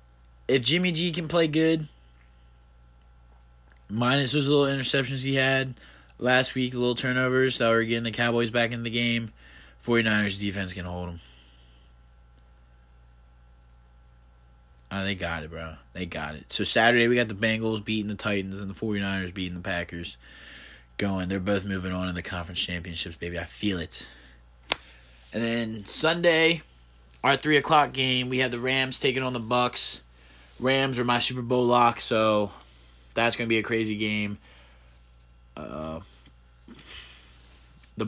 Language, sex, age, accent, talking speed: English, male, 20-39, American, 155 wpm